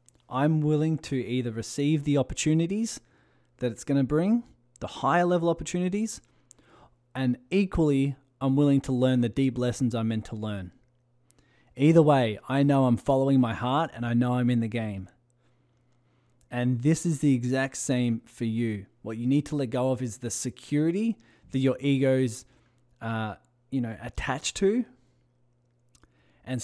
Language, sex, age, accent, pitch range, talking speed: English, male, 20-39, Australian, 120-145 Hz, 160 wpm